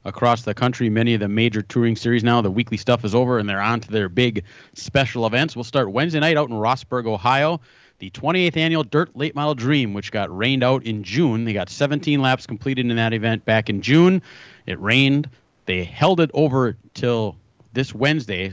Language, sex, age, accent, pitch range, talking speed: English, male, 30-49, American, 110-140 Hz, 205 wpm